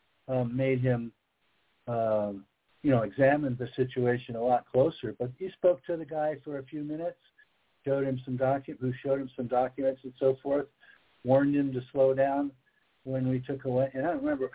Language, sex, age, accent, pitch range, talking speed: English, male, 60-79, American, 120-145 Hz, 190 wpm